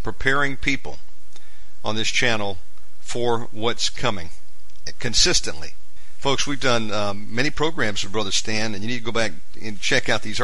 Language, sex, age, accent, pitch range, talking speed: English, male, 50-69, American, 105-135 Hz, 160 wpm